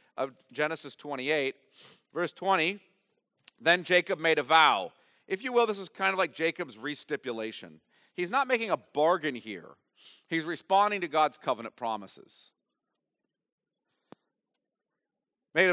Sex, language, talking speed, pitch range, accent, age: male, English, 125 wpm, 145-185 Hz, American, 40-59